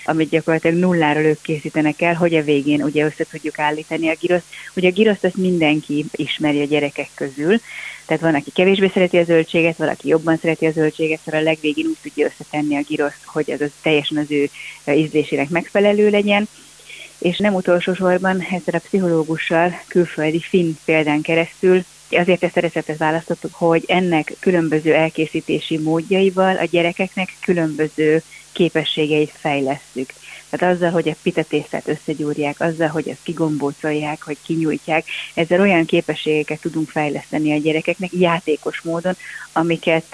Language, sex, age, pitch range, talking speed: Hungarian, female, 30-49, 155-175 Hz, 145 wpm